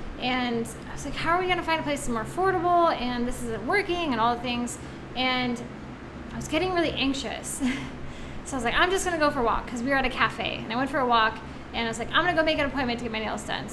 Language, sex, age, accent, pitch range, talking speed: English, female, 10-29, American, 245-315 Hz, 300 wpm